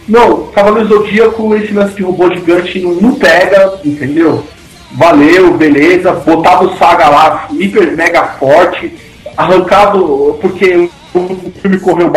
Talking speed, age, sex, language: 135 wpm, 40-59, male, Portuguese